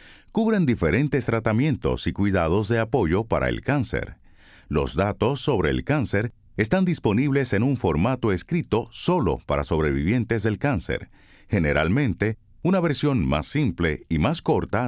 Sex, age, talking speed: male, 50-69, 135 wpm